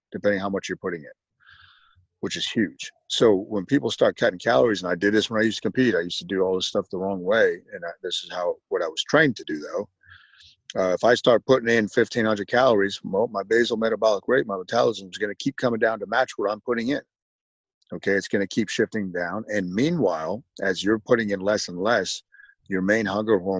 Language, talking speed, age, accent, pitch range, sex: English, 235 wpm, 40-59, American, 95-115 Hz, male